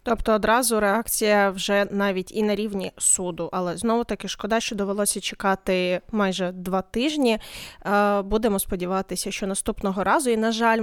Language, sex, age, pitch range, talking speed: Ukrainian, female, 20-39, 200-250 Hz, 150 wpm